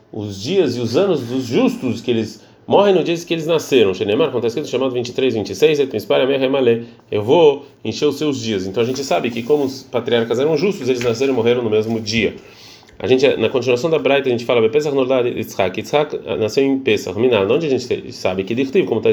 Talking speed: 190 wpm